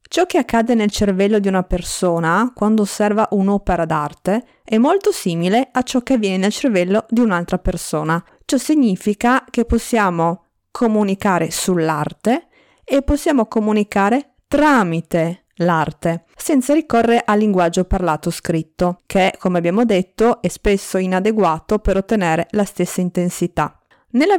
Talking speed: 130 wpm